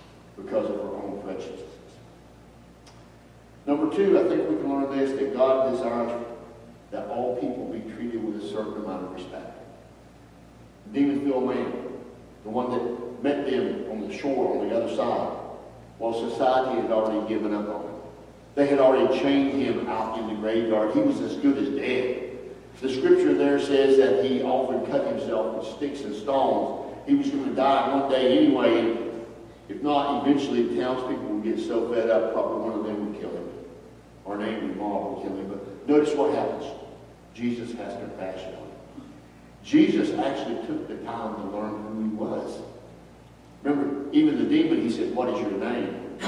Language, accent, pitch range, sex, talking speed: English, American, 110-140 Hz, male, 180 wpm